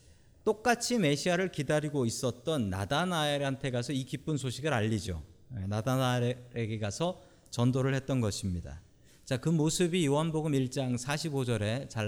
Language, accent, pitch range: Korean, native, 110-150 Hz